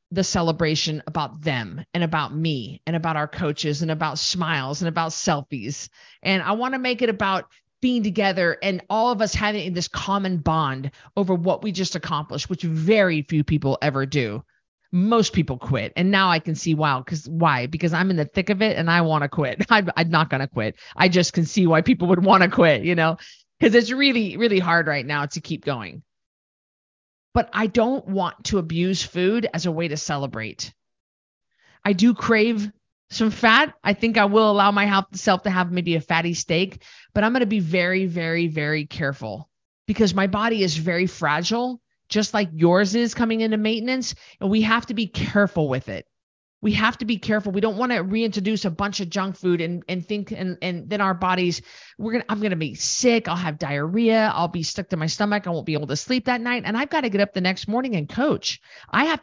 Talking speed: 220 wpm